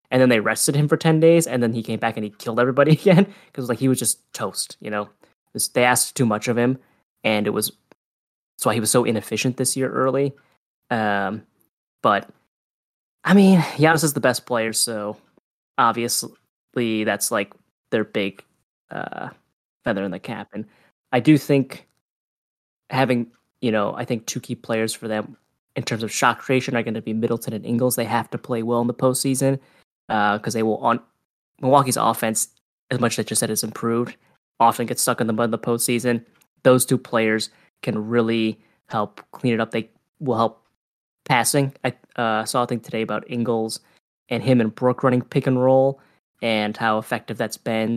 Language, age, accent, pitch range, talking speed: English, 10-29, American, 110-130 Hz, 195 wpm